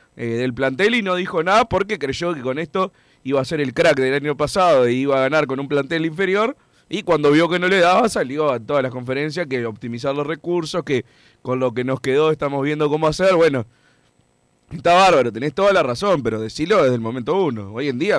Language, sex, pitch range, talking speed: Spanish, male, 125-195 Hz, 230 wpm